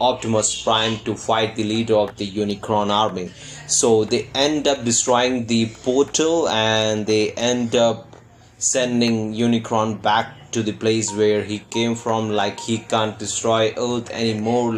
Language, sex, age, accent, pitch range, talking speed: Hindi, male, 20-39, native, 110-125 Hz, 150 wpm